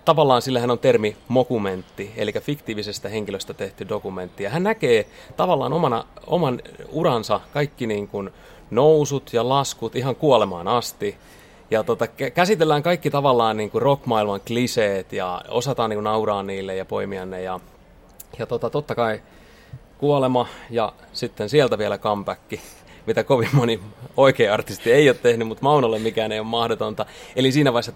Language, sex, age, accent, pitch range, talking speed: Finnish, male, 30-49, native, 105-135 Hz, 150 wpm